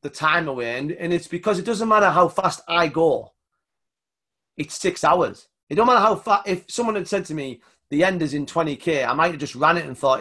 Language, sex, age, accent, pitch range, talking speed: English, male, 30-49, British, 125-170 Hz, 240 wpm